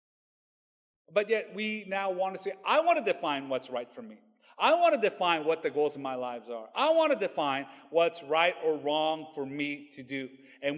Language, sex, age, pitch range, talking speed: English, male, 40-59, 150-245 Hz, 215 wpm